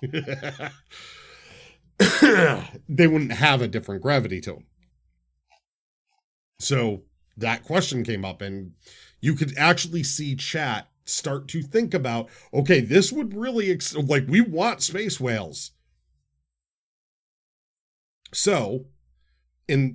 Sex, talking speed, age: male, 100 wpm, 40-59